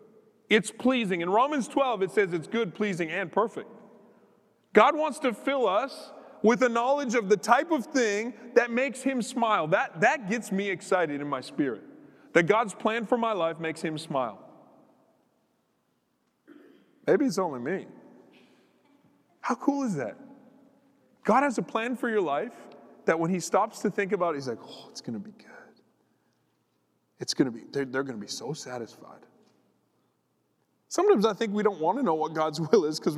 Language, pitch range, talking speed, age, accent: English, 170-250 Hz, 175 wpm, 30-49, American